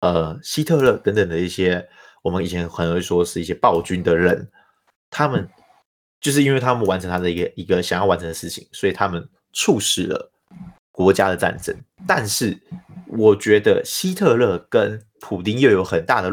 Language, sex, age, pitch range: Chinese, male, 30-49, 90-125 Hz